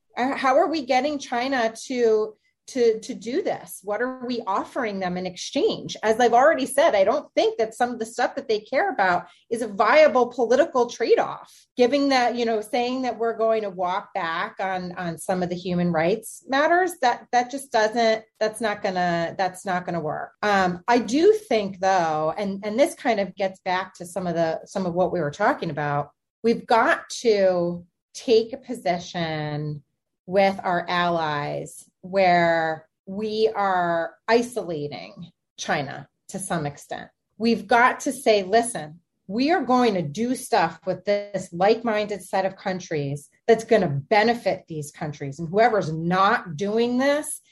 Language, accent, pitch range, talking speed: English, American, 180-240 Hz, 175 wpm